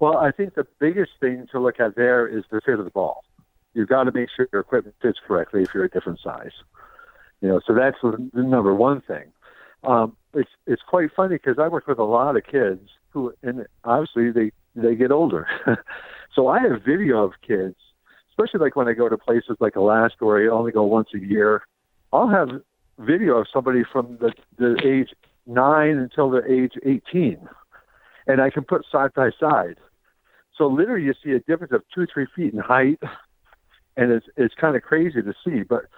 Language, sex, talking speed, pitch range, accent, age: English, male, 205 wpm, 115-145 Hz, American, 60-79